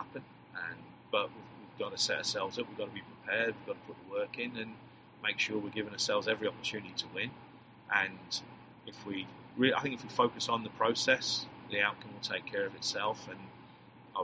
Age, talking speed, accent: 30-49, 225 wpm, British